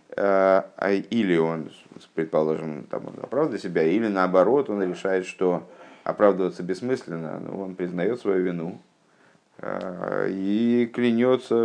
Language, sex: Russian, male